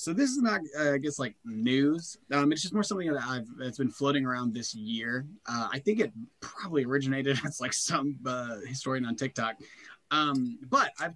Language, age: English, 20-39